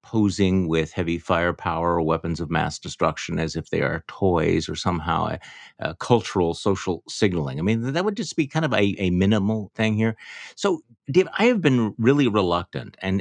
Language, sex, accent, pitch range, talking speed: English, male, American, 85-105 Hz, 190 wpm